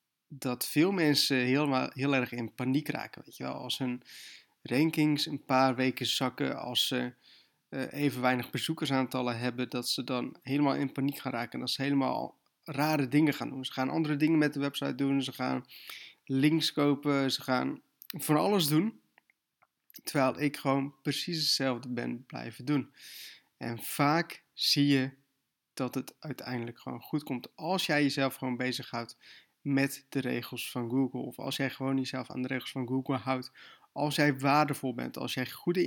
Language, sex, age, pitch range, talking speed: Dutch, male, 20-39, 125-145 Hz, 170 wpm